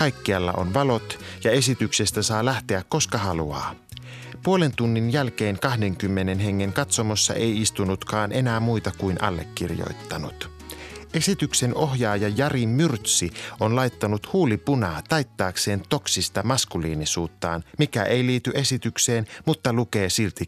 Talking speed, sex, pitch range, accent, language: 115 wpm, male, 100-140 Hz, native, Finnish